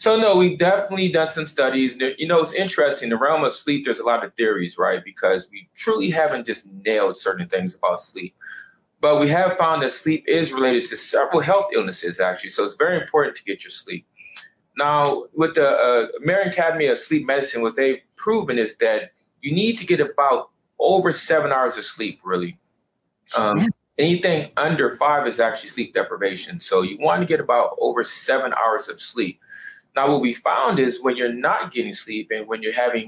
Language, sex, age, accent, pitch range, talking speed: English, male, 30-49, American, 120-195 Hz, 200 wpm